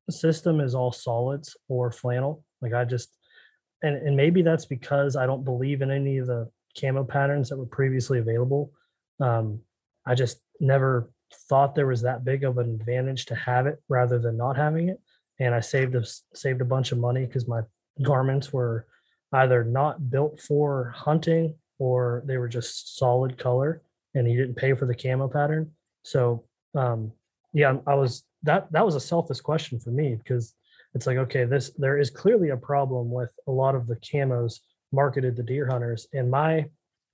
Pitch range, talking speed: 125-145 Hz, 185 wpm